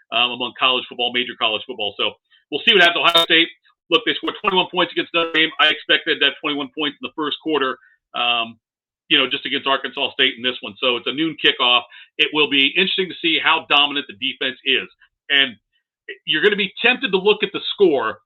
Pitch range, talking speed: 145-200 Hz, 225 wpm